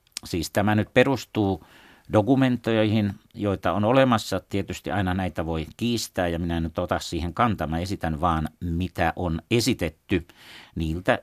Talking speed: 140 wpm